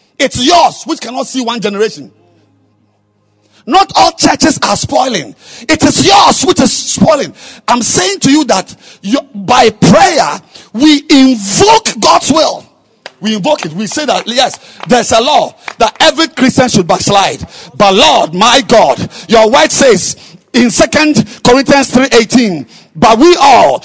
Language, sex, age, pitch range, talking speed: English, male, 50-69, 160-270 Hz, 150 wpm